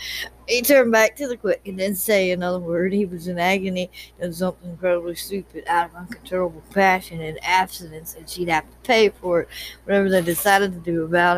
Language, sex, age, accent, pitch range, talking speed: English, female, 60-79, American, 170-200 Hz, 200 wpm